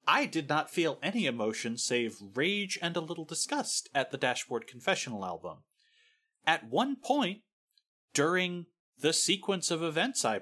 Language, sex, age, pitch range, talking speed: English, male, 30-49, 130-205 Hz, 150 wpm